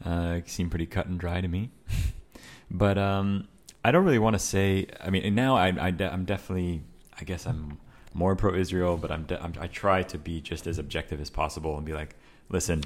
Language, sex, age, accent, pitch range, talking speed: English, male, 30-49, American, 80-95 Hz, 220 wpm